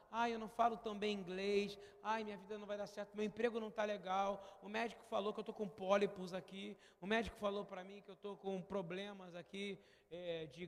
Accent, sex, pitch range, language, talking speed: Brazilian, male, 190-235 Hz, Portuguese, 225 wpm